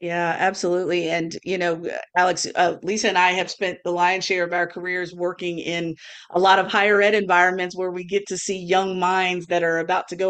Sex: female